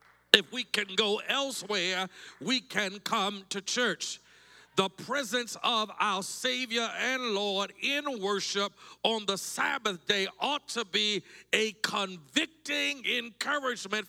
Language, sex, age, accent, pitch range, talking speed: English, male, 50-69, American, 190-250 Hz, 125 wpm